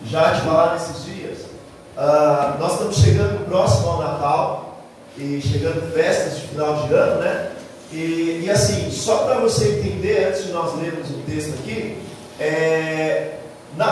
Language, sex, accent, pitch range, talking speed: Portuguese, male, Brazilian, 155-195 Hz, 155 wpm